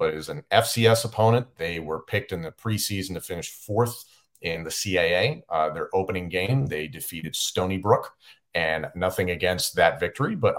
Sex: male